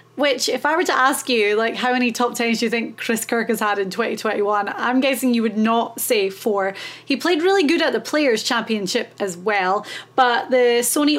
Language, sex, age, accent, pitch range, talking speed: English, female, 30-49, British, 225-270 Hz, 215 wpm